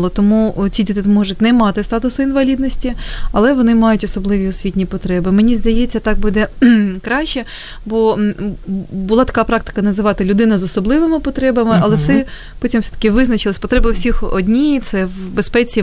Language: Ukrainian